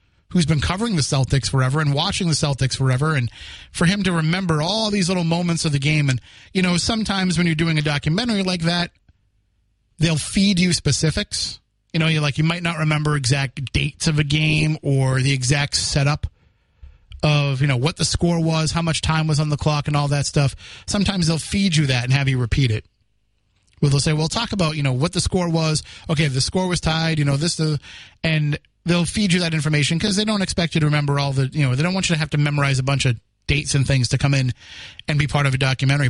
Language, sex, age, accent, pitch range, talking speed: English, male, 30-49, American, 130-165 Hz, 240 wpm